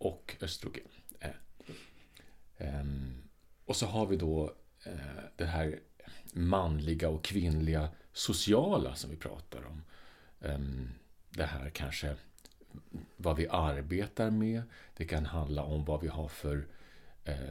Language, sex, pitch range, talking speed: Swedish, male, 75-85 Hz, 110 wpm